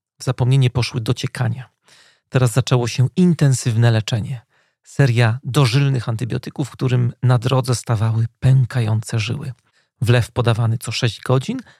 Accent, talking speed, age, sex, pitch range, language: native, 115 wpm, 40-59, male, 120-140 Hz, Polish